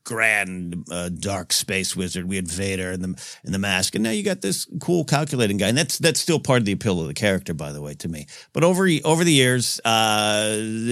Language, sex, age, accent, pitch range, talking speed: English, male, 50-69, American, 105-140 Hz, 235 wpm